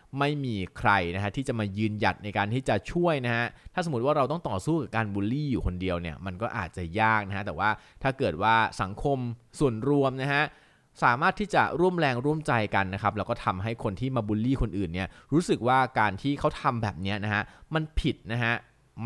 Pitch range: 100-130 Hz